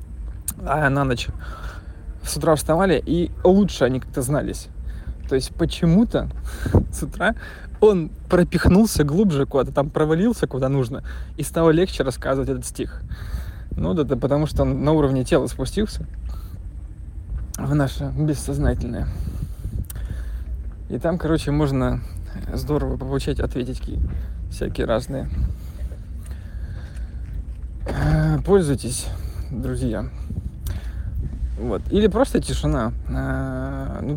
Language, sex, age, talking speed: Russian, male, 20-39, 105 wpm